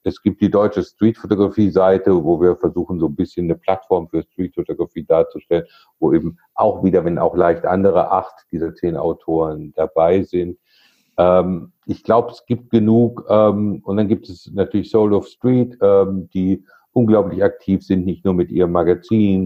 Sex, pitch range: male, 90-105 Hz